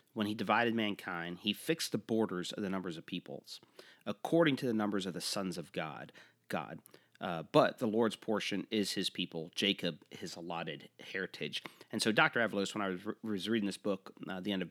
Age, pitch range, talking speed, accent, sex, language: 40-59, 85-105 Hz, 210 wpm, American, male, English